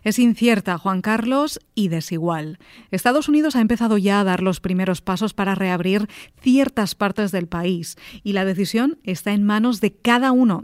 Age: 30-49